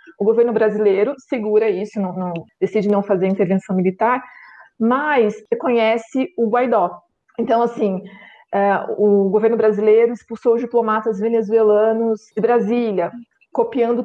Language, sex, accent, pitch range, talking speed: Portuguese, female, Brazilian, 200-240 Hz, 120 wpm